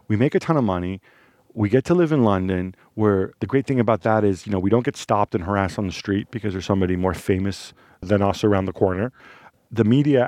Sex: male